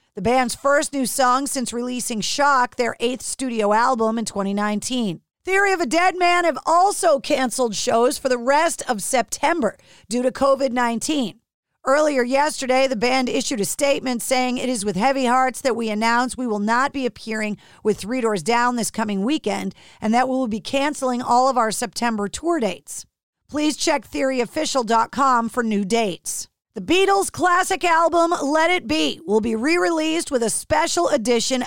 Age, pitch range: 40-59, 235-295 Hz